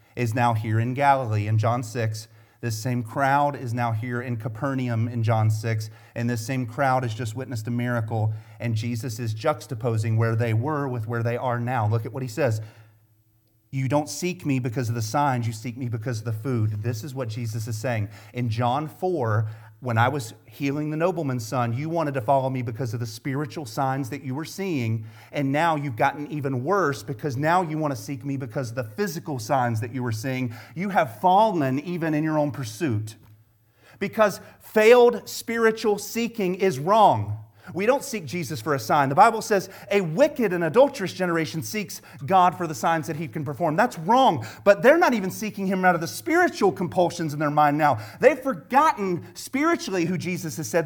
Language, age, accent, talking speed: English, 30-49, American, 205 wpm